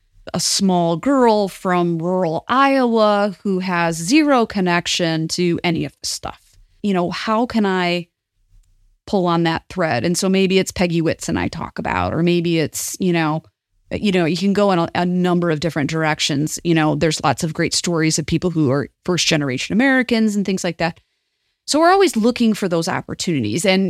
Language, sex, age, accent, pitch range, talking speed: English, female, 30-49, American, 160-195 Hz, 195 wpm